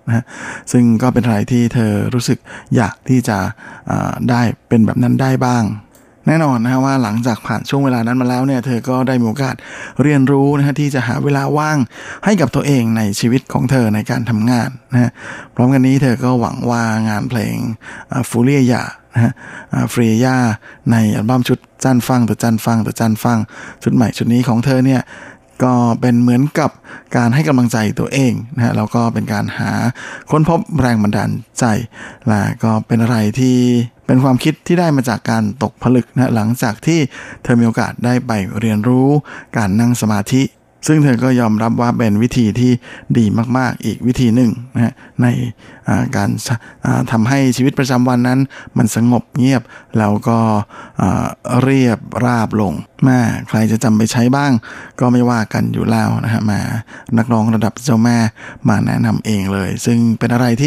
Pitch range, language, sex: 115-130 Hz, Thai, male